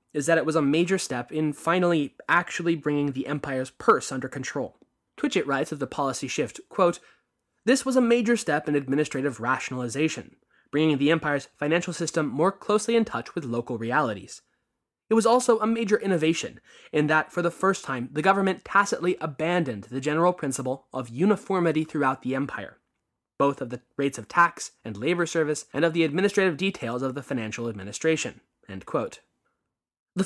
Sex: male